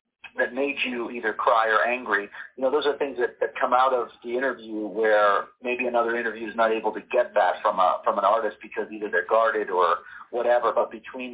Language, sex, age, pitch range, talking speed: English, male, 40-59, 110-135 Hz, 220 wpm